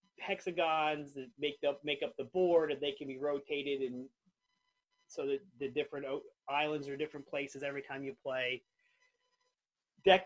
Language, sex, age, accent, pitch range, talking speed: English, male, 30-49, American, 135-170 Hz, 160 wpm